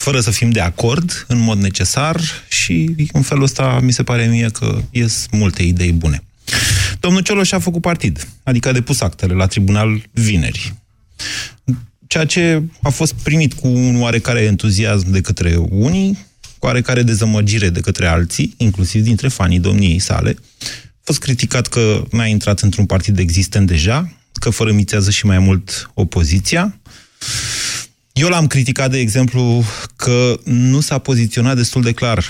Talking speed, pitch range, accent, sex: 160 wpm, 100-125 Hz, native, male